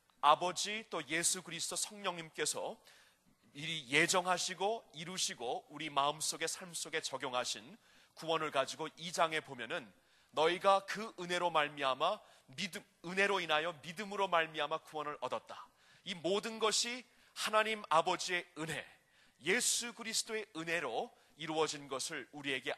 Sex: male